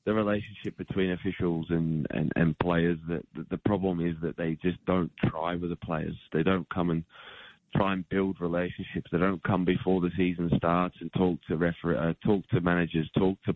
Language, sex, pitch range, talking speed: English, male, 85-100 Hz, 200 wpm